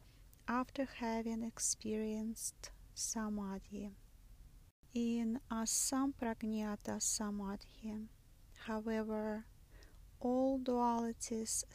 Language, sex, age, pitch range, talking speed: English, female, 30-49, 205-235 Hz, 50 wpm